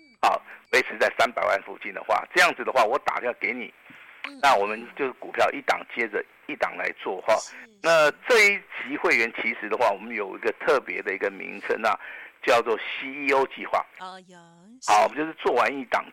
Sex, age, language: male, 50-69, Chinese